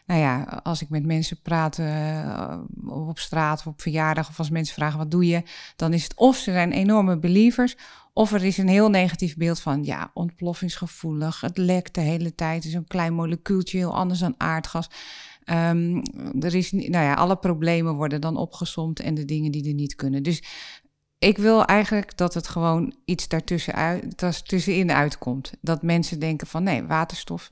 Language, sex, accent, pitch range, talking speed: Dutch, female, Dutch, 155-185 Hz, 185 wpm